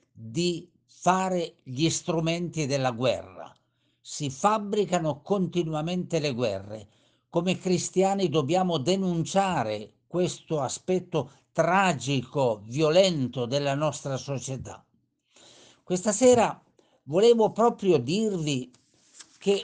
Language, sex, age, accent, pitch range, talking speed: Italian, male, 60-79, native, 130-190 Hz, 85 wpm